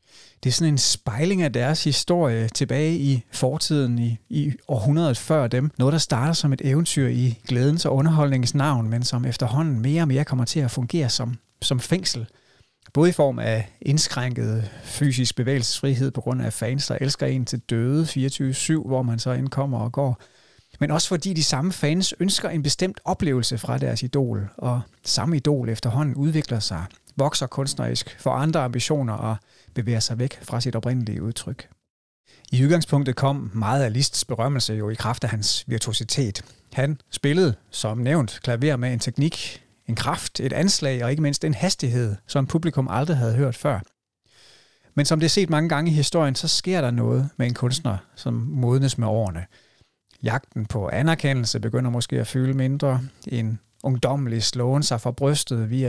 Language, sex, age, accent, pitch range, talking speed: Danish, male, 30-49, native, 120-145 Hz, 175 wpm